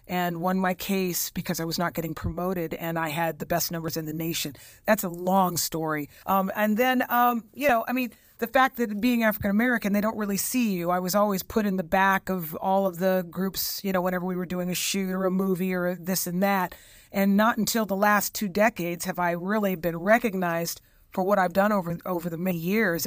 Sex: female